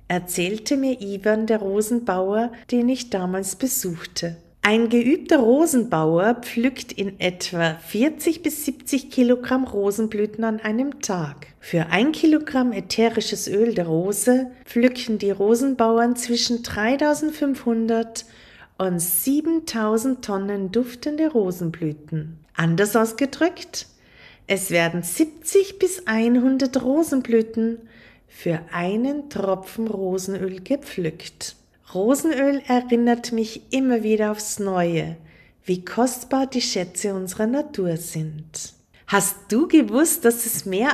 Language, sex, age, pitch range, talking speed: German, female, 40-59, 190-260 Hz, 105 wpm